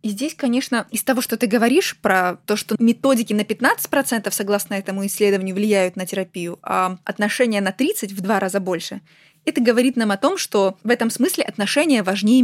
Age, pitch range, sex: 20-39, 200-240 Hz, female